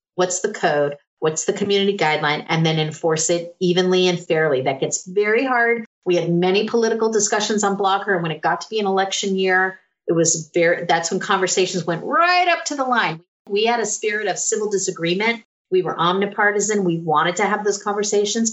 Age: 30-49